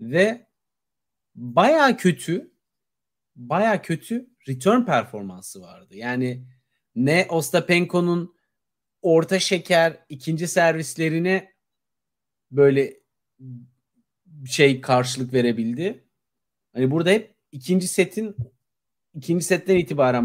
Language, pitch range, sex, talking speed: Turkish, 140-200 Hz, male, 85 wpm